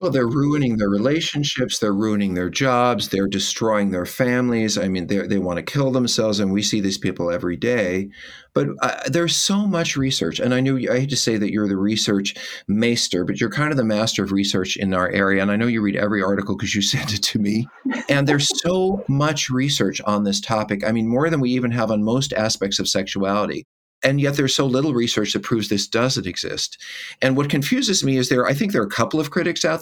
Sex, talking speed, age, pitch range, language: male, 230 wpm, 50-69, 105-135 Hz, English